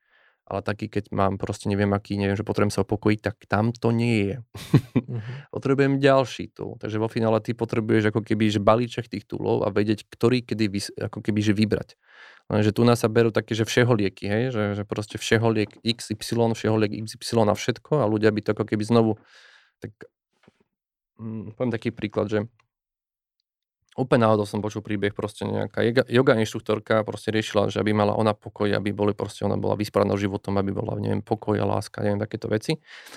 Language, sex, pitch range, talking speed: Slovak, male, 105-115 Hz, 185 wpm